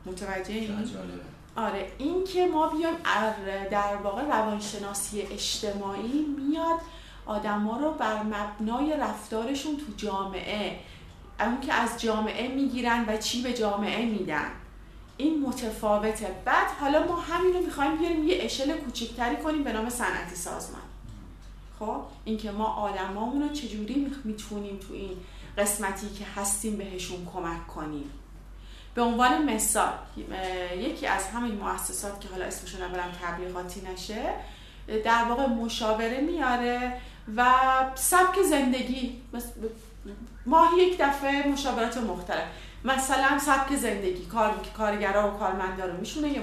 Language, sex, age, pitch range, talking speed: Persian, female, 30-49, 200-265 Hz, 125 wpm